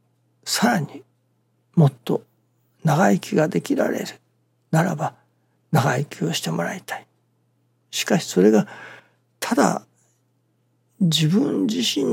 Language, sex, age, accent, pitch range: Japanese, male, 60-79, native, 125-155 Hz